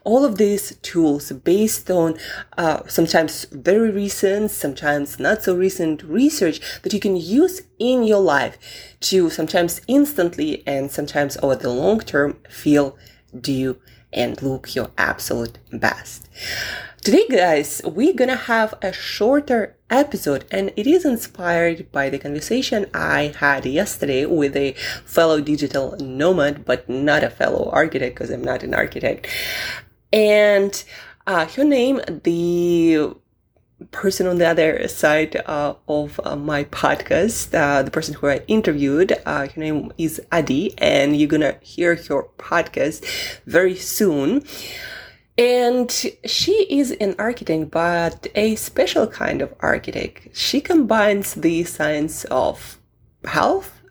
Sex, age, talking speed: female, 20-39, 135 wpm